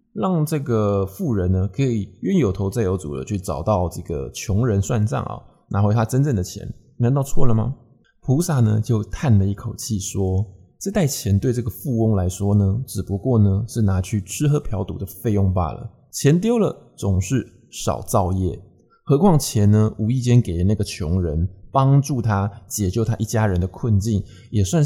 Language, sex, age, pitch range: Chinese, male, 20-39, 95-125 Hz